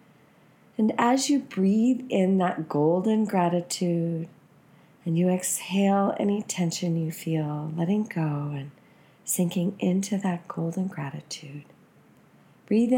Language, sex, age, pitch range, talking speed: English, female, 40-59, 155-200 Hz, 110 wpm